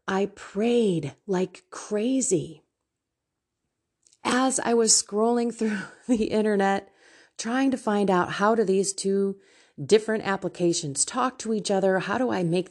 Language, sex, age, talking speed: English, female, 30-49, 135 wpm